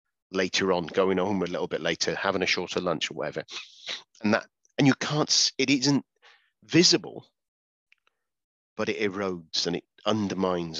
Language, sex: English, male